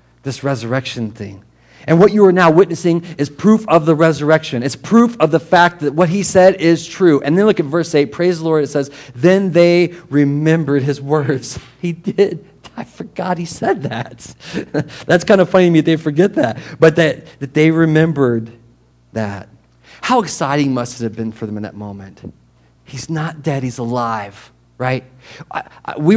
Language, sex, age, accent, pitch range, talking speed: English, male, 40-59, American, 120-165 Hz, 190 wpm